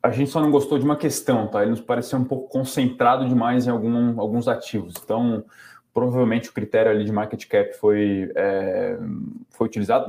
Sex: male